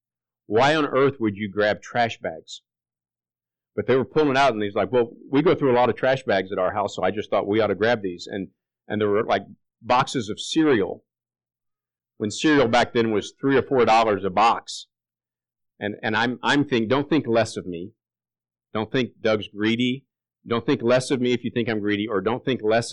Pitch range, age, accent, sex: 105-135 Hz, 50-69, American, male